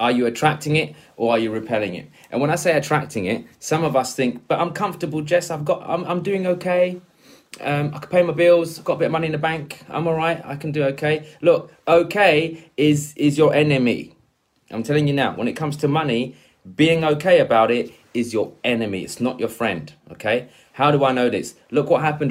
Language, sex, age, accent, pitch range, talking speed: English, male, 20-39, British, 115-160 Hz, 235 wpm